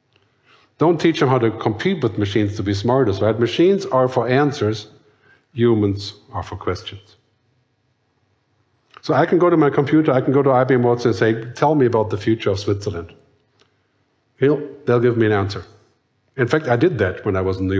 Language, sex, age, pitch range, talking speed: English, male, 50-69, 105-130 Hz, 190 wpm